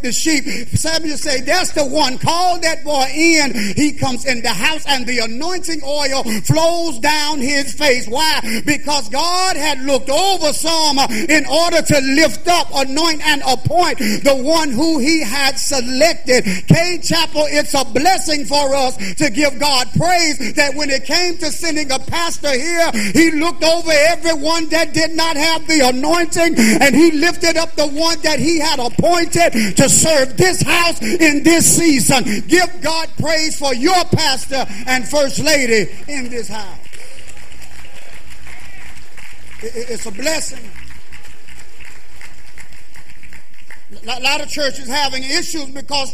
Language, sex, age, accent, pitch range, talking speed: English, male, 40-59, American, 230-315 Hz, 150 wpm